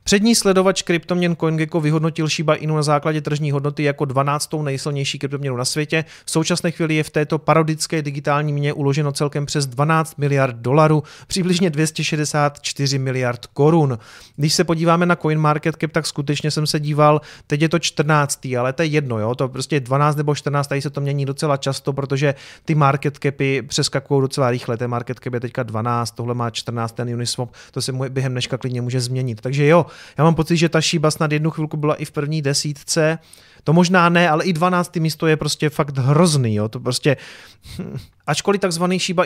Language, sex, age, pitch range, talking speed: Czech, male, 30-49, 140-165 Hz, 195 wpm